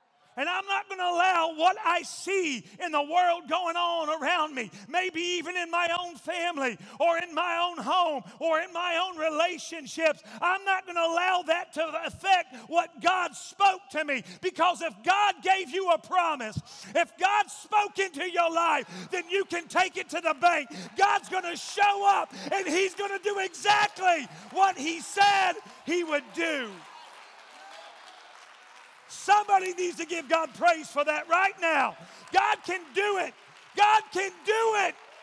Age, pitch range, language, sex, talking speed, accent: 40-59, 285-365 Hz, English, male, 170 wpm, American